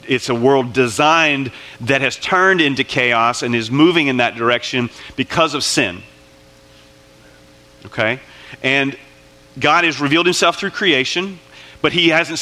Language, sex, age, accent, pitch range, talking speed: English, male, 40-59, American, 115-155 Hz, 140 wpm